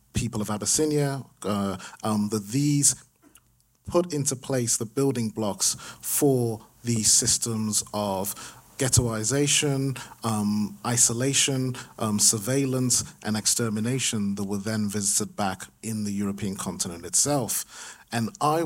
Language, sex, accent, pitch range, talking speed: English, male, British, 105-130 Hz, 115 wpm